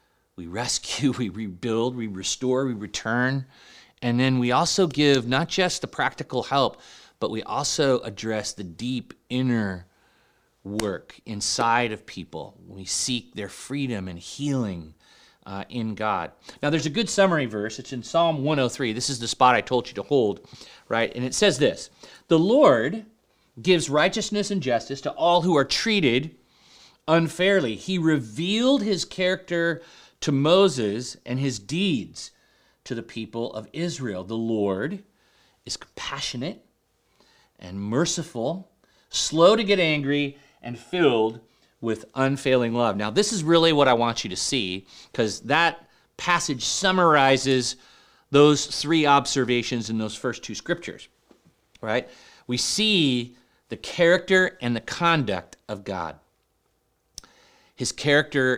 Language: English